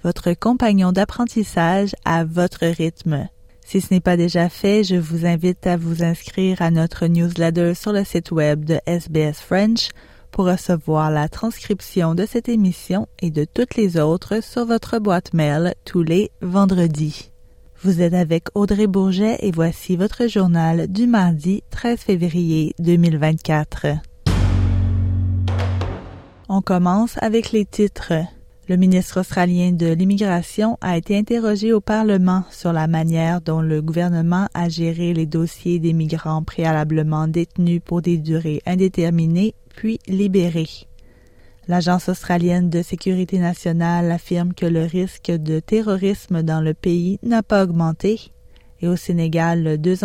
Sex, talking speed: female, 140 wpm